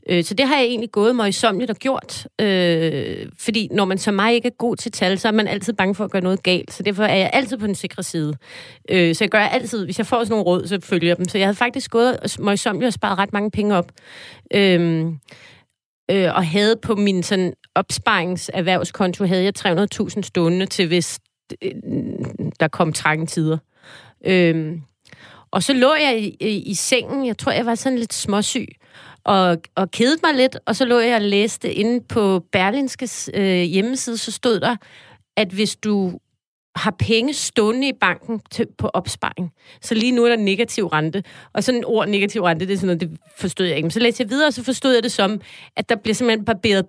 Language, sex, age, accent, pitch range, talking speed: Danish, female, 30-49, native, 180-230 Hz, 210 wpm